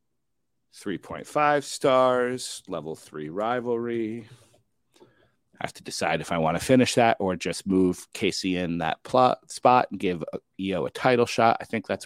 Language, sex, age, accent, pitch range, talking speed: English, male, 40-59, American, 105-130 Hz, 160 wpm